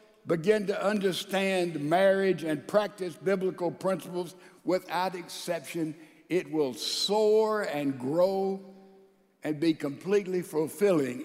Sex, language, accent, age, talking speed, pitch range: male, English, American, 60-79, 100 wpm, 180-230 Hz